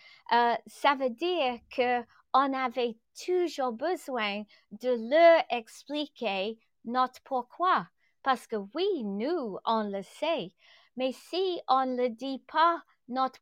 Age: 30-49